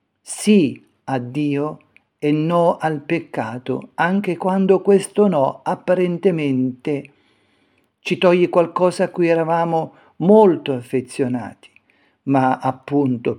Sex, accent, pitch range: male, native, 135-180 Hz